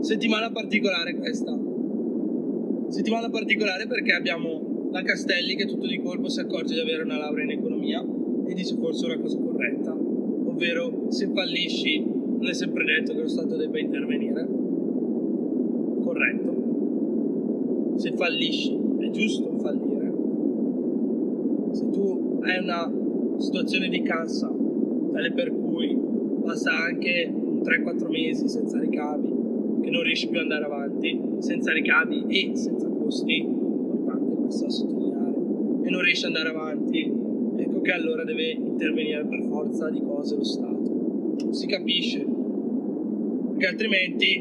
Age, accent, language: 20-39, native, Italian